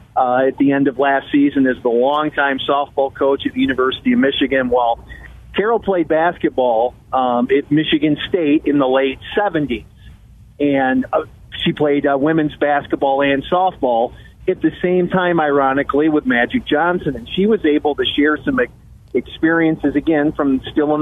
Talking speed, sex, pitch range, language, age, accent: 165 wpm, male, 135-155 Hz, English, 40-59, American